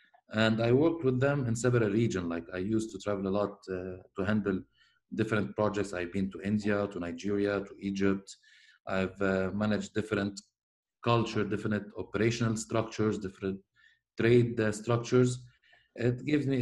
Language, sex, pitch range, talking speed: English, male, 95-115 Hz, 155 wpm